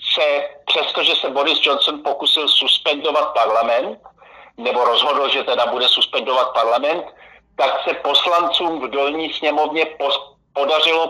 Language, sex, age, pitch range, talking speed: Slovak, male, 50-69, 130-160 Hz, 115 wpm